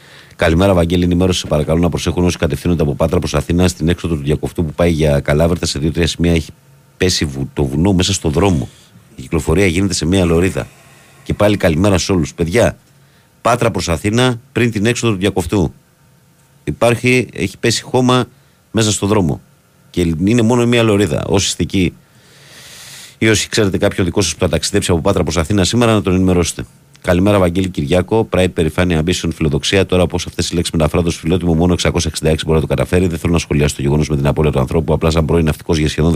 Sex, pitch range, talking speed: male, 80-100 Hz, 200 wpm